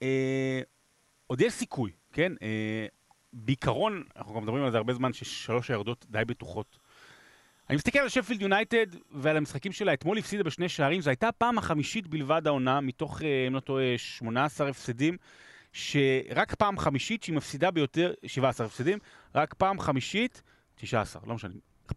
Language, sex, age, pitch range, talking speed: Hebrew, male, 30-49, 115-165 Hz, 155 wpm